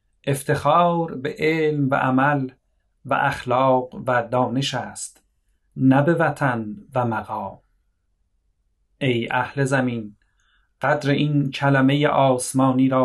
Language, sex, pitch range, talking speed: Persian, male, 125-140 Hz, 105 wpm